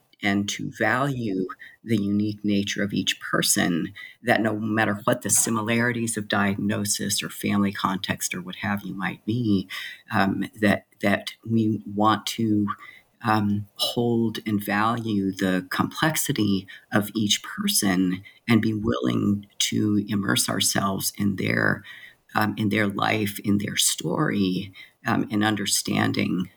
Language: English